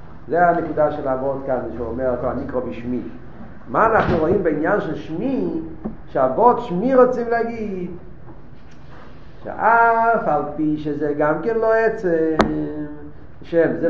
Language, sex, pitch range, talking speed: Hebrew, male, 135-170 Hz, 125 wpm